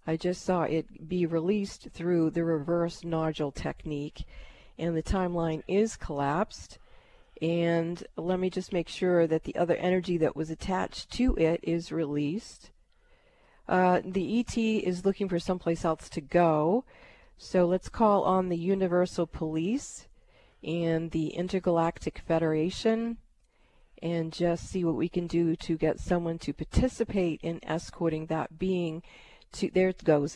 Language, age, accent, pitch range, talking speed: English, 40-59, American, 165-195 Hz, 145 wpm